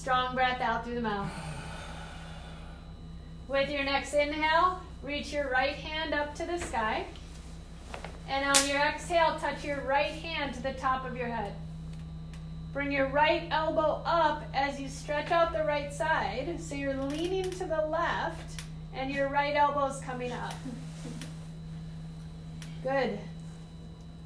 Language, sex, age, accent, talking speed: English, female, 30-49, American, 145 wpm